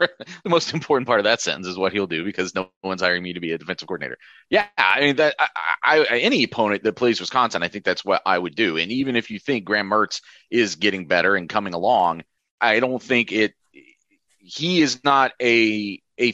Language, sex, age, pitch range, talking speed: English, male, 30-49, 105-135 Hz, 225 wpm